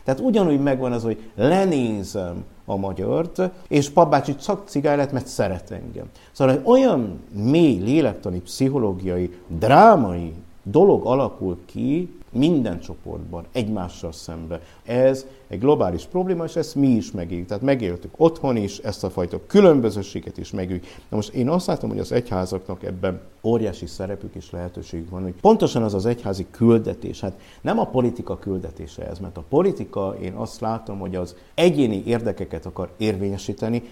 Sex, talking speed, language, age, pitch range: male, 150 wpm, Hungarian, 60-79, 90-135 Hz